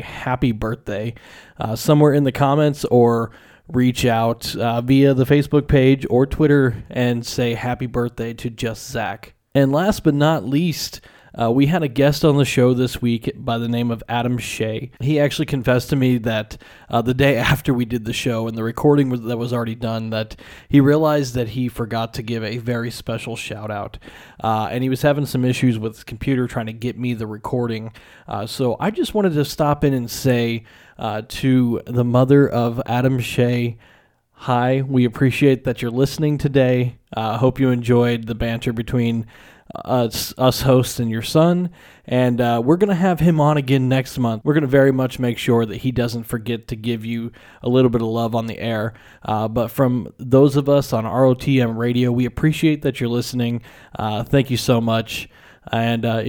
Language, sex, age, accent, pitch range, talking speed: English, male, 30-49, American, 115-135 Hz, 195 wpm